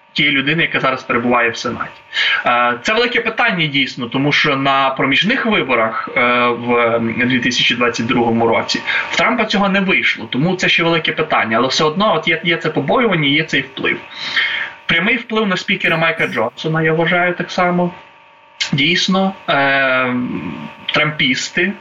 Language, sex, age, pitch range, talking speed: Ukrainian, male, 20-39, 120-175 Hz, 150 wpm